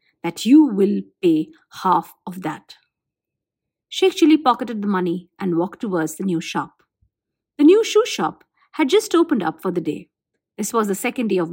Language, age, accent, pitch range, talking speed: English, 50-69, Indian, 175-275 Hz, 180 wpm